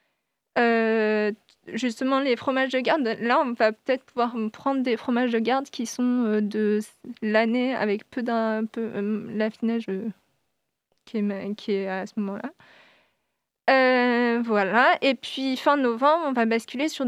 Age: 20-39